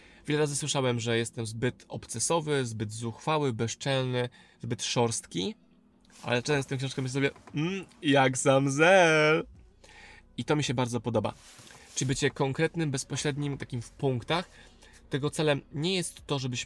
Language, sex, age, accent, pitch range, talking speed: Polish, male, 20-39, native, 125-150 Hz, 150 wpm